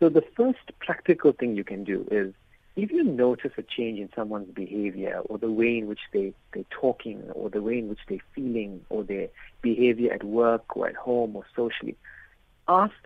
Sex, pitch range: male, 110-140 Hz